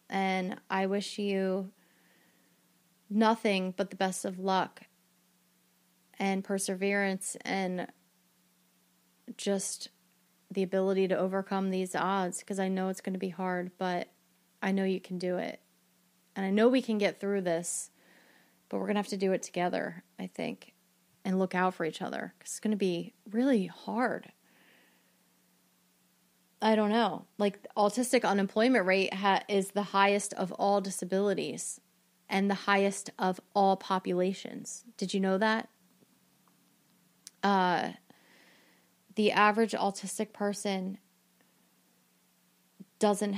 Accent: American